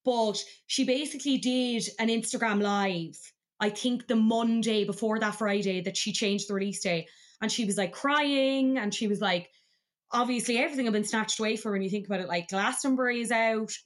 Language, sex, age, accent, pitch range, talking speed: English, female, 20-39, Irish, 200-245 Hz, 195 wpm